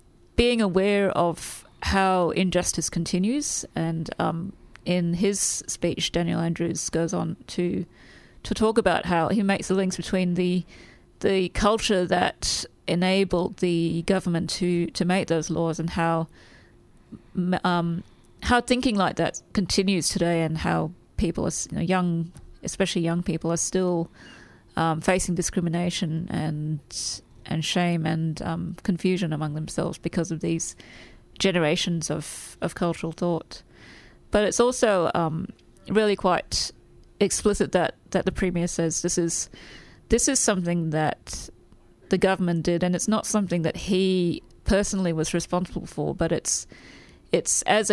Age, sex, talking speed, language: 30-49, female, 140 wpm, English